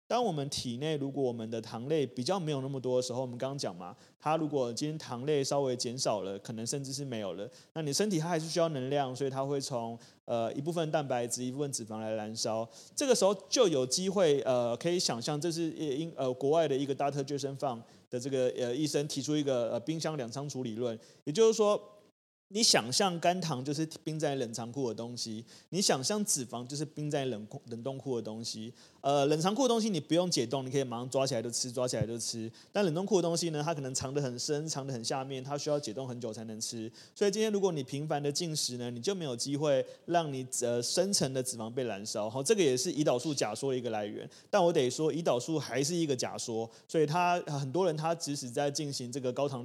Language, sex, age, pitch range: Chinese, male, 30-49, 120-155 Hz